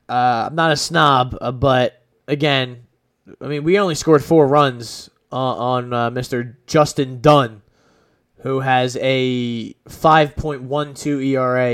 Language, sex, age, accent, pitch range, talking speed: English, male, 20-39, American, 125-145 Hz, 135 wpm